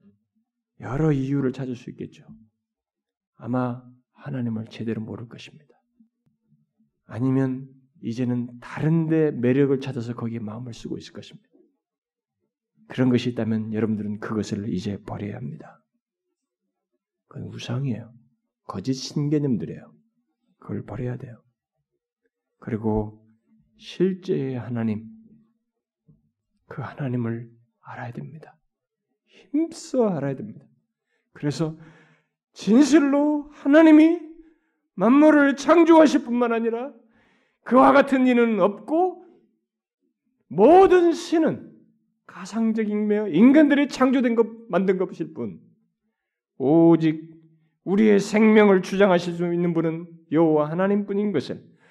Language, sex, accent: Korean, male, native